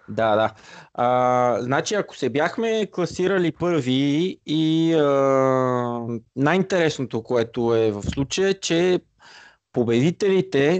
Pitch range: 105-145 Hz